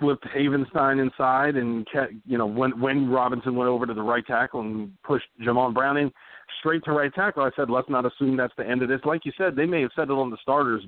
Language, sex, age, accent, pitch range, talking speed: English, male, 40-59, American, 110-135 Hz, 245 wpm